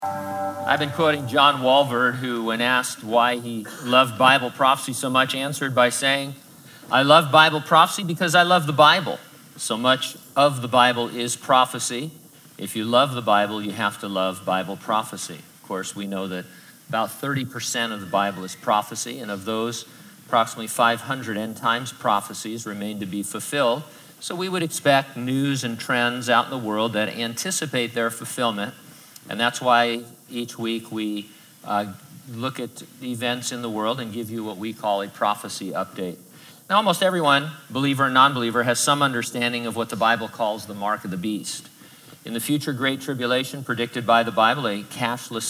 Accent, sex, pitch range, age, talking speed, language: American, male, 110-135 Hz, 50-69, 185 wpm, English